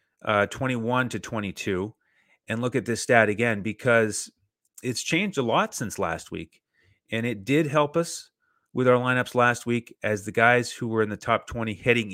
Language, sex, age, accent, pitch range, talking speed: English, male, 30-49, American, 105-125 Hz, 190 wpm